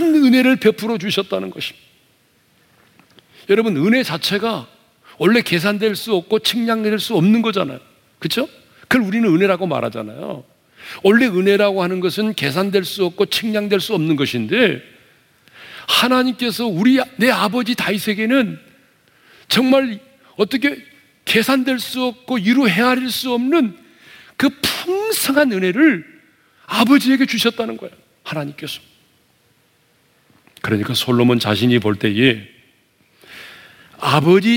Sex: male